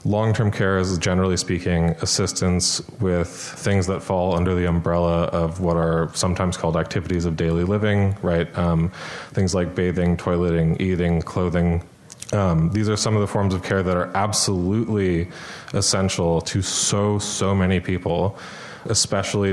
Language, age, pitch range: English, 20-39, 90-100 Hz